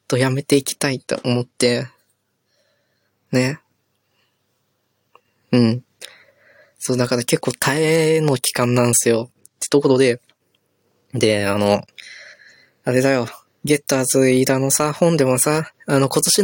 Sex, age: female, 20-39